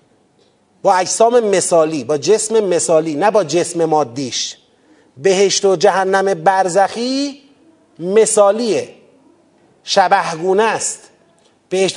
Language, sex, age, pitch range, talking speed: Persian, male, 40-59, 200-285 Hz, 90 wpm